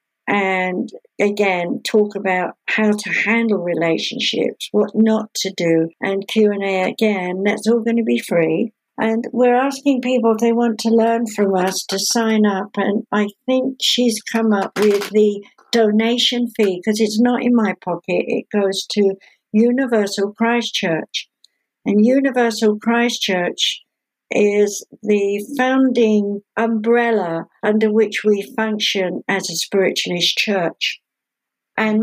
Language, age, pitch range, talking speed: English, 60-79, 195-230 Hz, 135 wpm